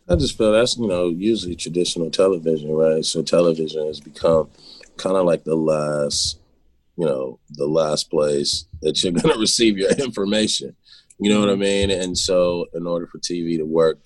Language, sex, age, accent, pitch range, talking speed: English, male, 30-49, American, 75-90 Hz, 185 wpm